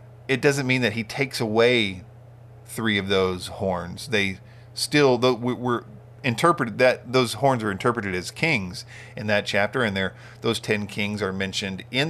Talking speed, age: 165 wpm, 40-59